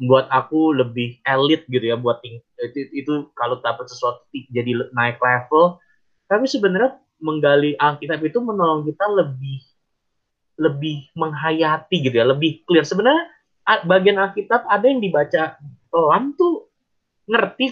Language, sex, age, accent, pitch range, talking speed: Indonesian, male, 20-39, native, 130-175 Hz, 135 wpm